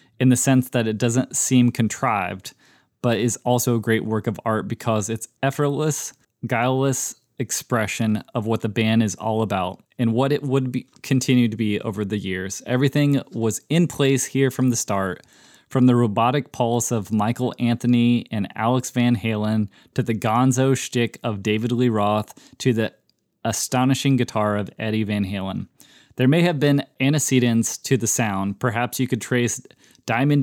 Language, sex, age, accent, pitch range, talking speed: English, male, 20-39, American, 110-130 Hz, 170 wpm